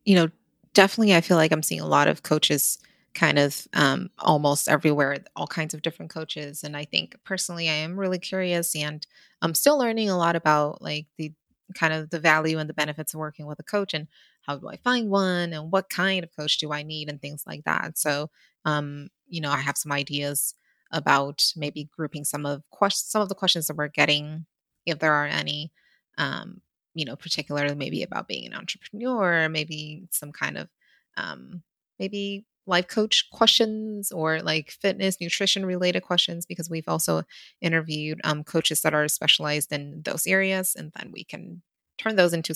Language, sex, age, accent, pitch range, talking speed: English, female, 20-39, American, 150-185 Hz, 195 wpm